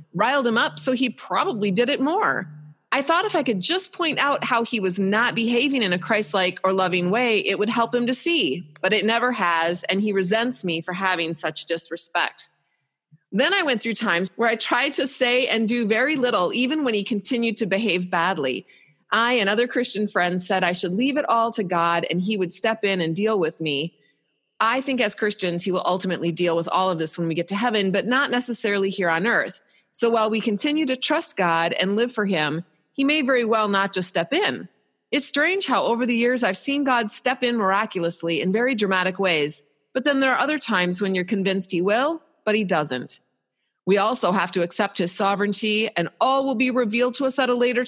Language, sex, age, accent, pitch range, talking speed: English, female, 30-49, American, 180-250 Hz, 225 wpm